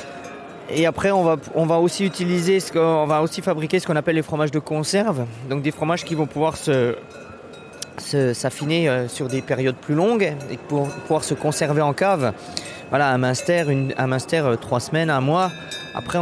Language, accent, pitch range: French, French, 130-165 Hz